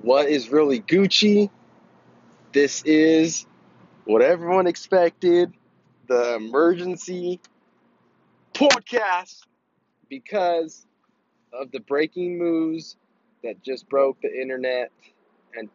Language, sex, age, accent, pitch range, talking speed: English, male, 20-39, American, 140-170 Hz, 90 wpm